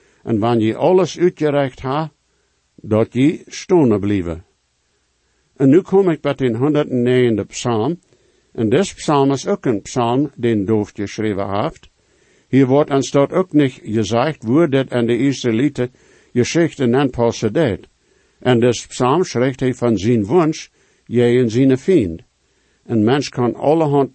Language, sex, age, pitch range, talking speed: English, male, 60-79, 120-150 Hz, 160 wpm